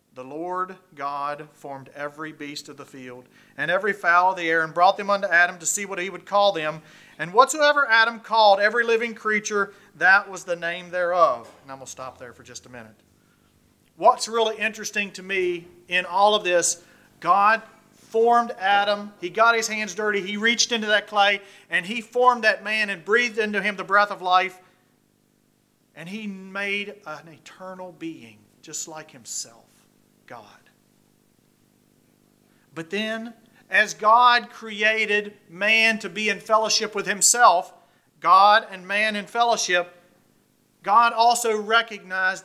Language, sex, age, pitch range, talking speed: English, male, 40-59, 150-215 Hz, 160 wpm